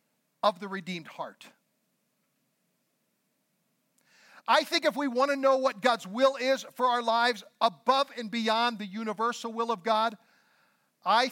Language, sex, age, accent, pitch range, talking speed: English, male, 50-69, American, 195-235 Hz, 145 wpm